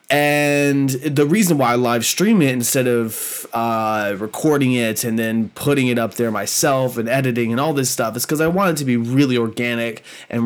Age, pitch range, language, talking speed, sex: 20-39, 120-150 Hz, English, 205 wpm, male